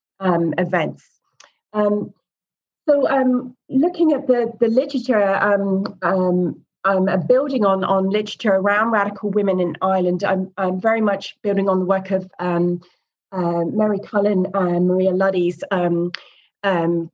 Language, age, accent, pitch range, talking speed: English, 30-49, British, 175-205 Hz, 145 wpm